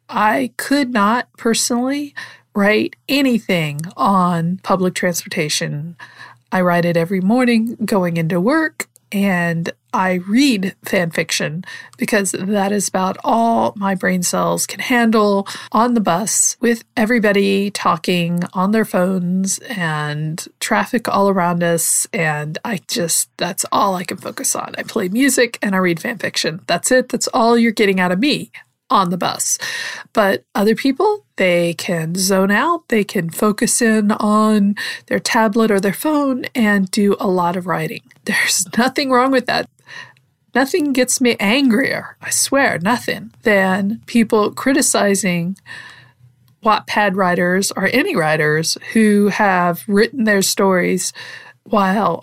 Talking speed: 140 wpm